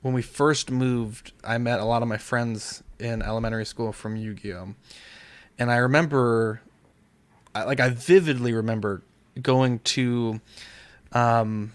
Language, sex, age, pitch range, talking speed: English, male, 20-39, 110-125 Hz, 135 wpm